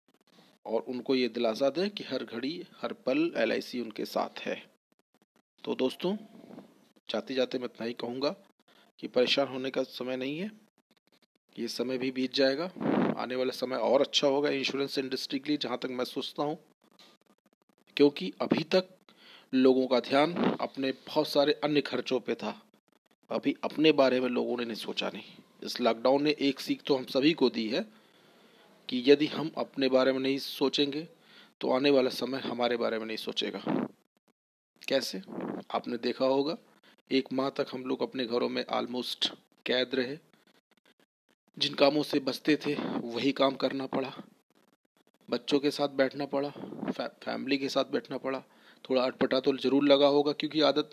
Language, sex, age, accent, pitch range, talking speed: Hindi, male, 40-59, native, 130-150 Hz, 165 wpm